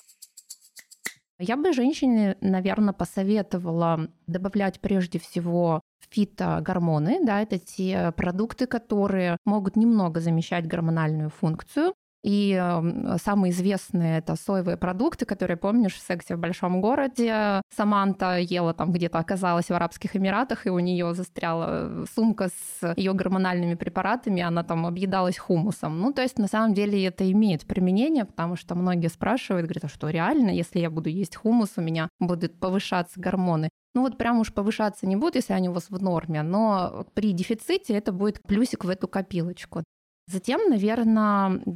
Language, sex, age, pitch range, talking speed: Russian, female, 20-39, 175-210 Hz, 150 wpm